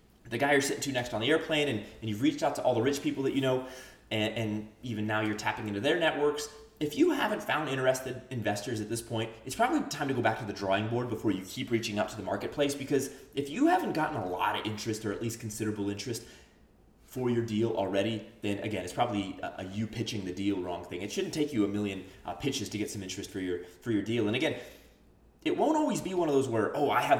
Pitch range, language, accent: 110-150 Hz, English, American